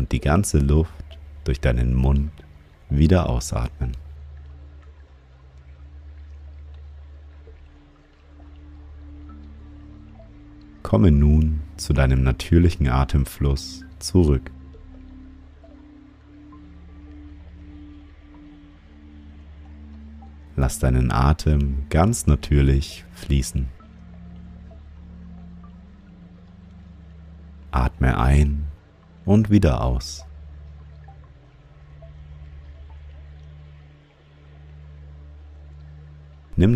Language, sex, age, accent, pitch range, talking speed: German, male, 50-69, German, 70-80 Hz, 45 wpm